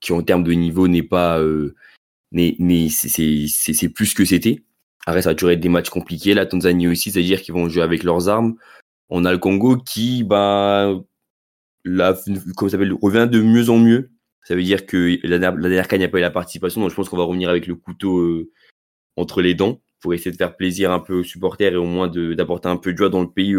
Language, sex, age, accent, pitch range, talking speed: French, male, 20-39, French, 90-105 Hz, 245 wpm